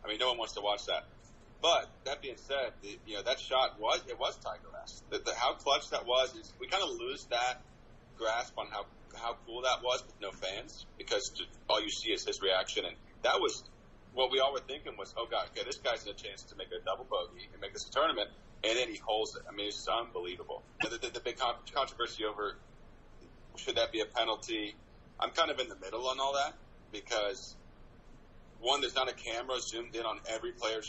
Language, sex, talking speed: English, male, 245 wpm